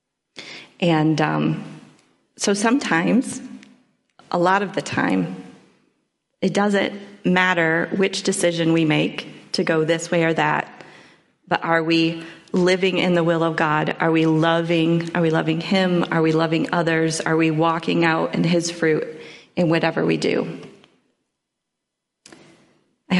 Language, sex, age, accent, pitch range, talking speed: English, female, 30-49, American, 165-195 Hz, 140 wpm